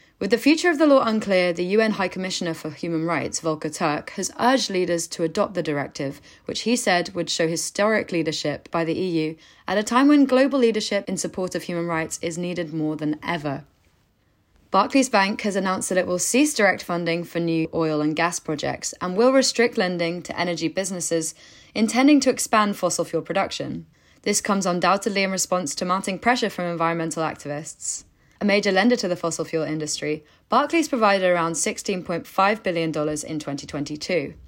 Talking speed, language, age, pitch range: 180 wpm, English, 20-39, 160-215 Hz